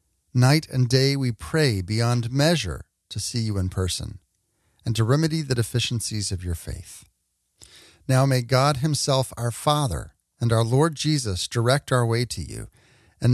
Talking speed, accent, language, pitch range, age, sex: 160 wpm, American, English, 100-135 Hz, 40-59, male